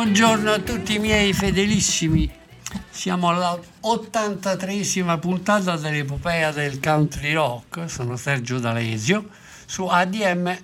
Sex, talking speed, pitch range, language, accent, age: male, 105 wpm, 145-185 Hz, Italian, native, 60-79